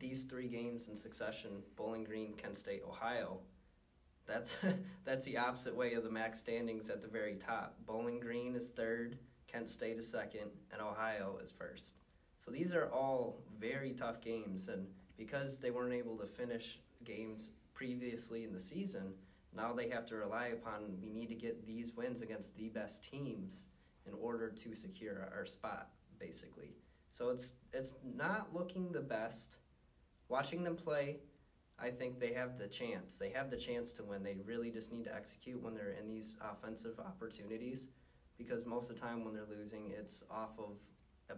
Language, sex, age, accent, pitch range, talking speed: English, male, 20-39, American, 105-125 Hz, 180 wpm